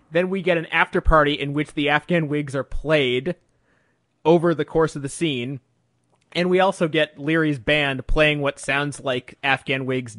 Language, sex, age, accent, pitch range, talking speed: English, male, 30-49, American, 130-160 Hz, 185 wpm